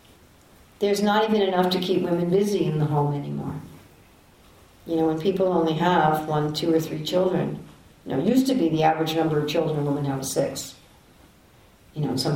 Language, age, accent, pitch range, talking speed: English, 60-79, American, 145-175 Hz, 205 wpm